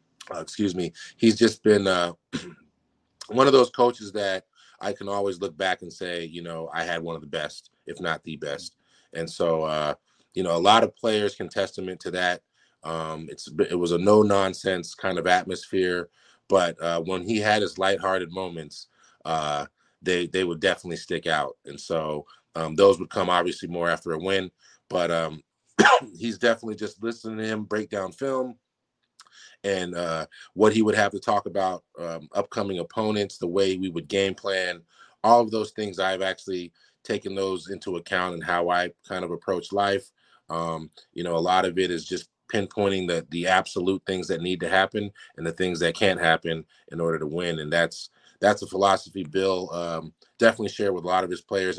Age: 30-49